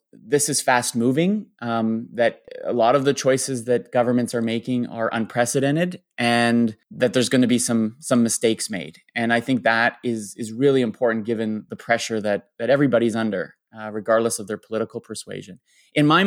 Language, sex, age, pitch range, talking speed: English, male, 20-39, 115-135 Hz, 185 wpm